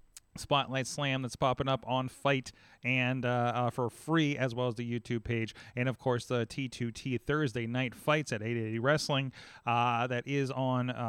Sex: male